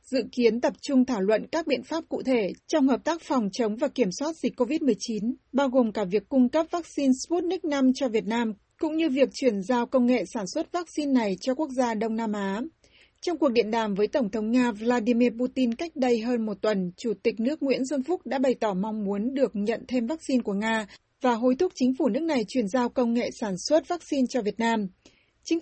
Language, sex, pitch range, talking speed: Vietnamese, female, 225-275 Hz, 235 wpm